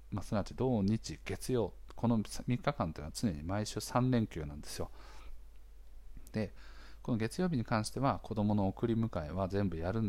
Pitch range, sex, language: 85-115 Hz, male, Japanese